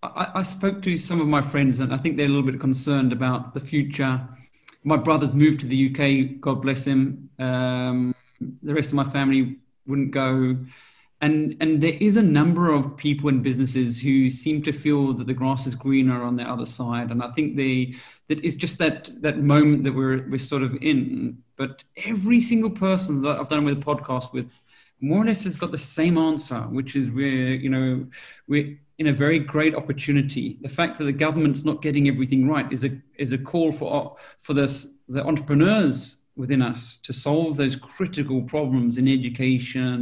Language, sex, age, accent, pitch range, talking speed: English, male, 30-49, British, 130-155 Hz, 200 wpm